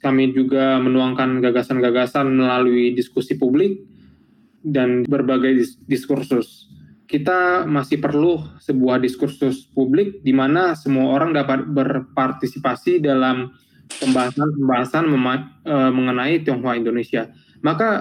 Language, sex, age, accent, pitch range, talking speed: Indonesian, male, 20-39, native, 130-145 Hz, 100 wpm